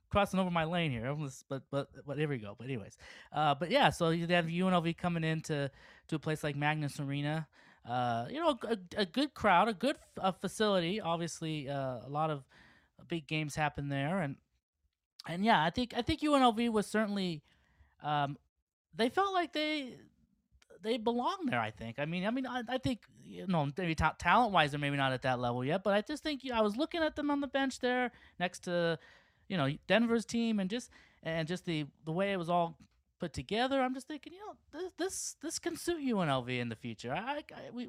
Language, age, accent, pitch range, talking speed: English, 20-39, American, 125-210 Hz, 215 wpm